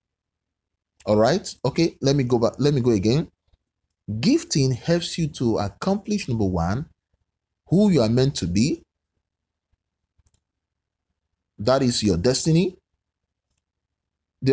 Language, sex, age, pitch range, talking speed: English, male, 30-49, 95-140 Hz, 120 wpm